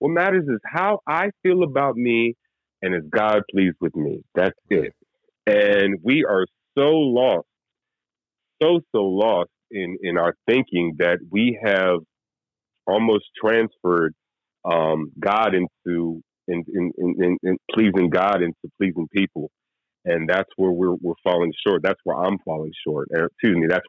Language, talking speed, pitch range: English, 140 wpm, 85-115 Hz